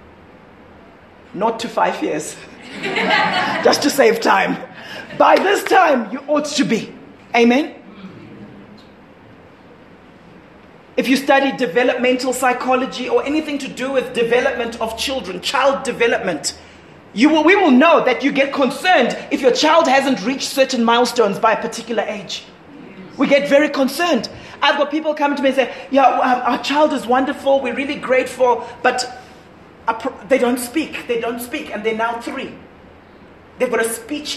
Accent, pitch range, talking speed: South African, 230-280 Hz, 150 wpm